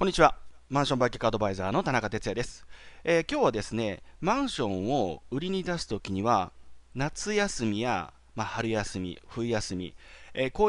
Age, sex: 30-49, male